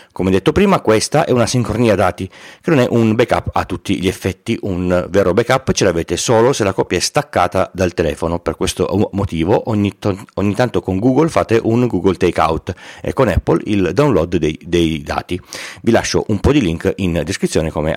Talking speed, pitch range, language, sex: 200 wpm, 85-115 Hz, Italian, male